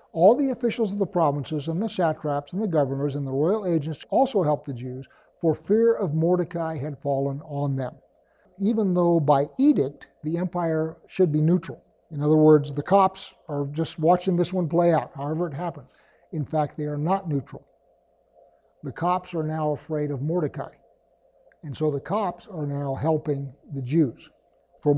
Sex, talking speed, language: male, 180 wpm, English